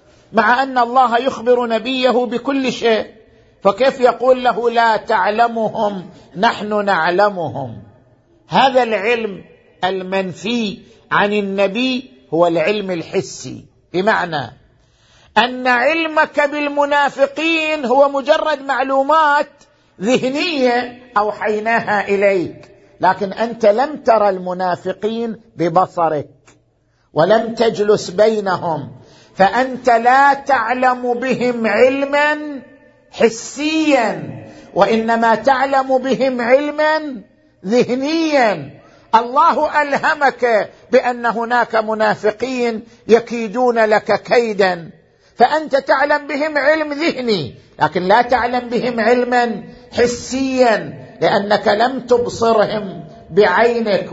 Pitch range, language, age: 205-260 Hz, Arabic, 50-69